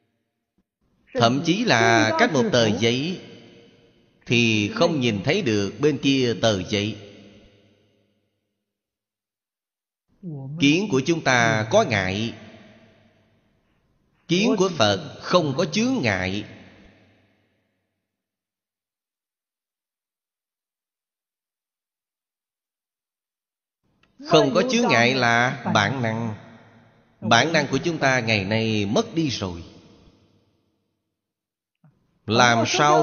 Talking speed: 85 wpm